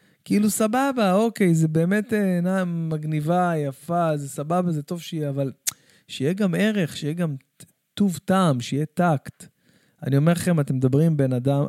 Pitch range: 130-170 Hz